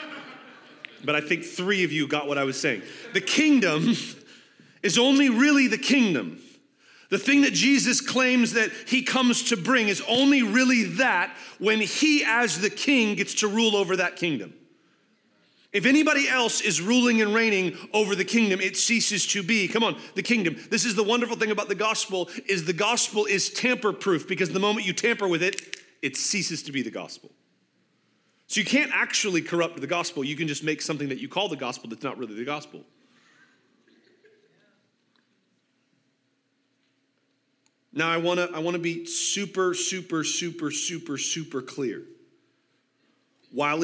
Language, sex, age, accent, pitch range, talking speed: English, male, 30-49, American, 165-230 Hz, 165 wpm